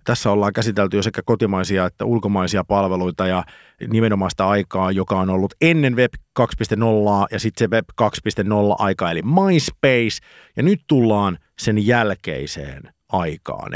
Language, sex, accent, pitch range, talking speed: Finnish, male, native, 100-130 Hz, 140 wpm